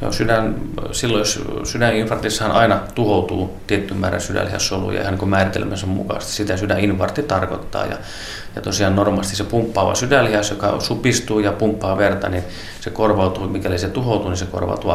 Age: 30-49